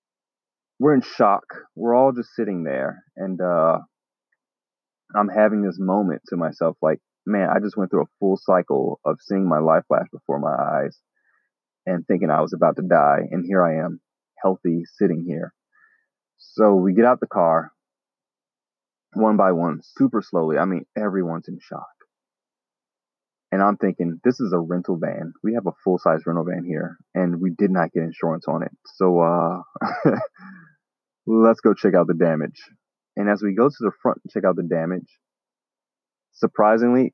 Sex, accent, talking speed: male, American, 175 wpm